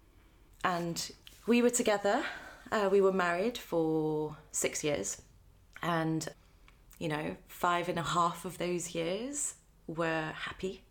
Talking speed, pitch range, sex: 125 wpm, 150-185 Hz, female